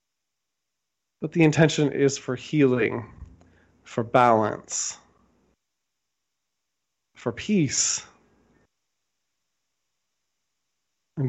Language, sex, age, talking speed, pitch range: English, male, 20-39, 60 wpm, 125-145 Hz